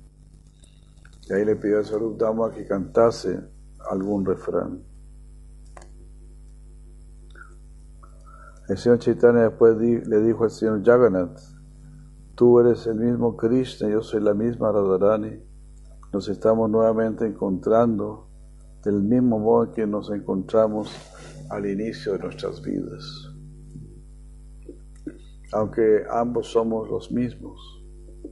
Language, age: Spanish, 60-79